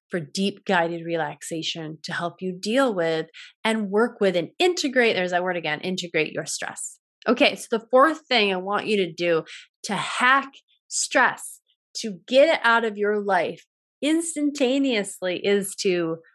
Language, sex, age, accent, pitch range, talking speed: English, female, 20-39, American, 170-210 Hz, 160 wpm